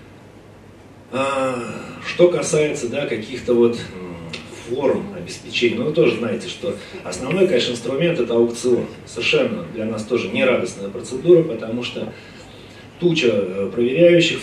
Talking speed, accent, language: 110 wpm, native, Russian